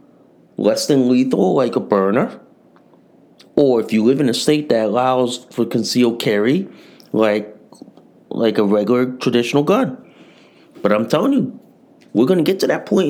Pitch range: 120-180 Hz